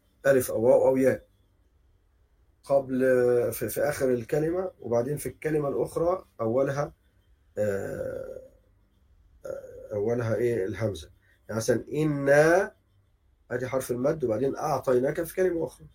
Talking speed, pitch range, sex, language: 110 wpm, 100-150 Hz, male, Arabic